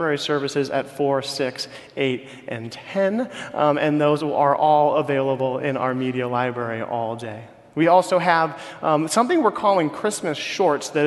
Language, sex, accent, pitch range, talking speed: English, male, American, 135-180 Hz, 155 wpm